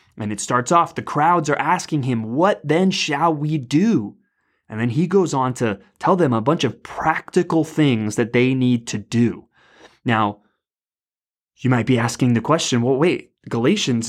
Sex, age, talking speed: male, 20-39, 180 wpm